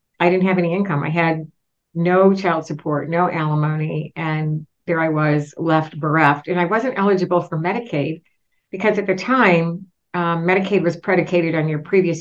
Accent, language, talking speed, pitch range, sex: American, English, 170 wpm, 155-185 Hz, female